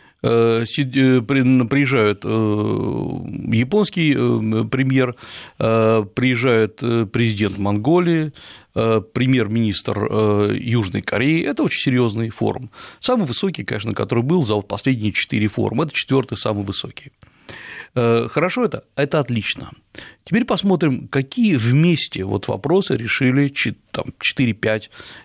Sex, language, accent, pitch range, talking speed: male, Russian, native, 110-145 Hz, 90 wpm